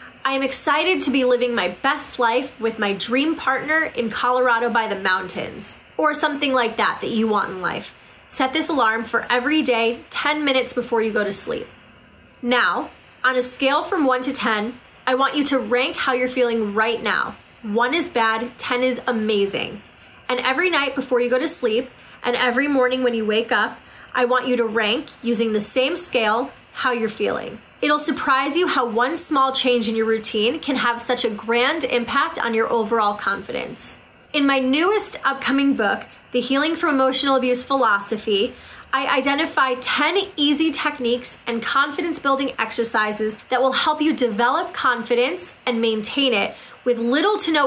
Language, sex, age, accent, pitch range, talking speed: English, female, 20-39, American, 230-280 Hz, 180 wpm